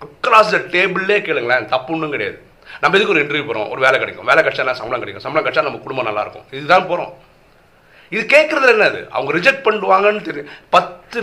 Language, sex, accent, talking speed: Tamil, male, native, 190 wpm